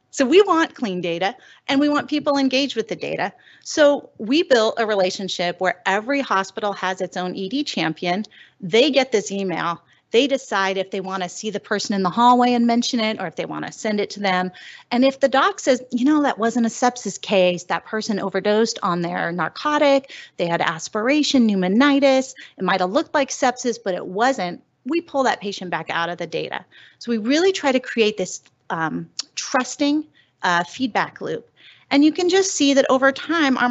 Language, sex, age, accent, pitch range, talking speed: English, female, 30-49, American, 195-275 Hz, 200 wpm